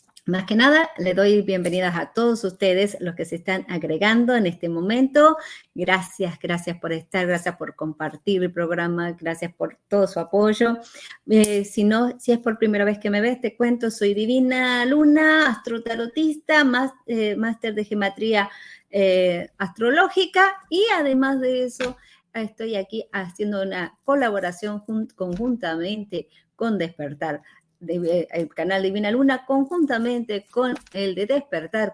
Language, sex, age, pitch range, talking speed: Spanish, female, 30-49, 180-255 Hz, 140 wpm